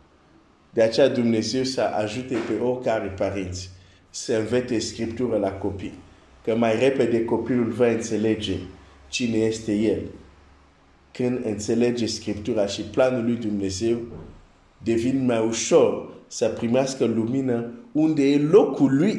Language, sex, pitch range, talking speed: Romanian, male, 95-125 Hz, 135 wpm